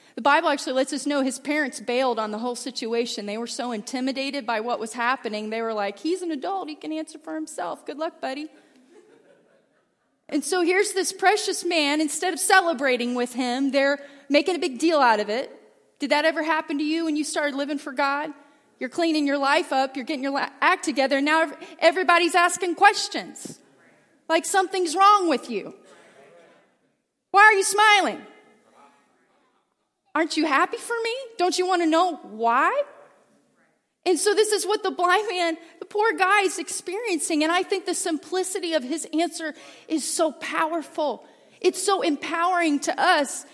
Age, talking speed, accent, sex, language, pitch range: 30-49, 180 wpm, American, female, English, 285-370 Hz